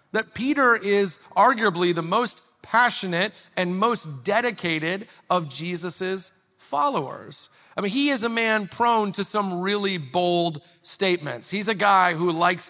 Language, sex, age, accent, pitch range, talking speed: English, male, 40-59, American, 160-205 Hz, 140 wpm